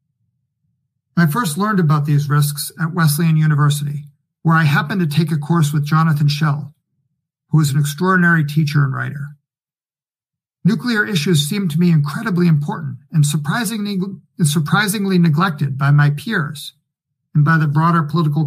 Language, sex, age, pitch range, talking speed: English, male, 50-69, 145-165 Hz, 150 wpm